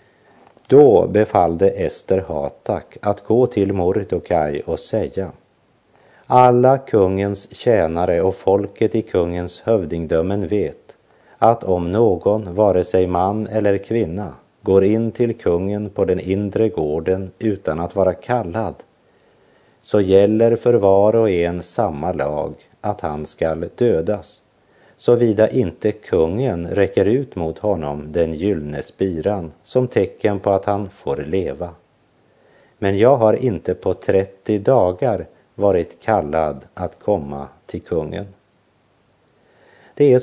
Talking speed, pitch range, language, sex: 120 wpm, 90-115 Hz, Swedish, male